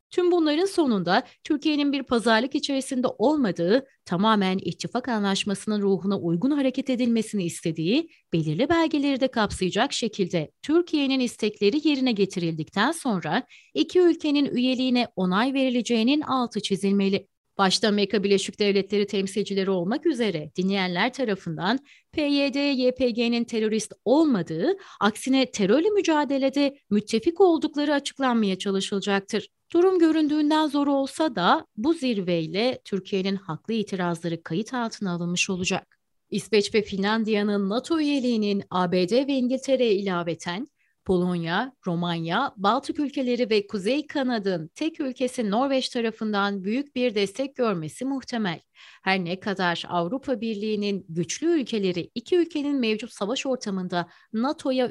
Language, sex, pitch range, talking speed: Turkish, female, 190-265 Hz, 115 wpm